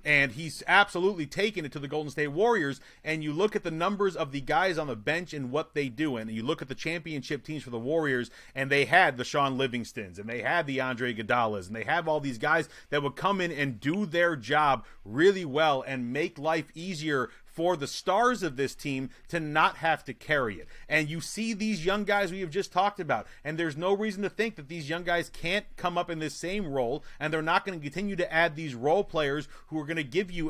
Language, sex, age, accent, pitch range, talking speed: English, male, 30-49, American, 135-165 Hz, 240 wpm